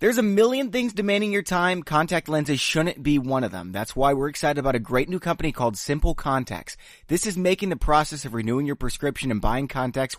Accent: American